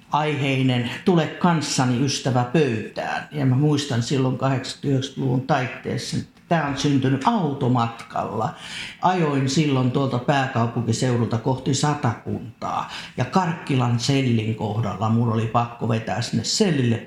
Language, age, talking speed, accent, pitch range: Finnish, 50-69, 115 wpm, native, 120-145 Hz